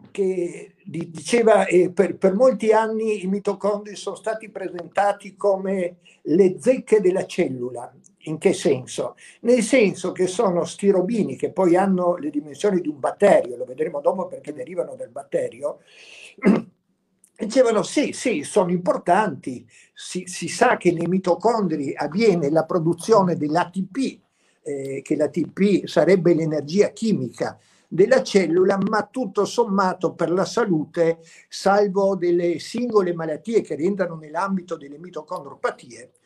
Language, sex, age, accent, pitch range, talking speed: Italian, male, 60-79, native, 170-210 Hz, 130 wpm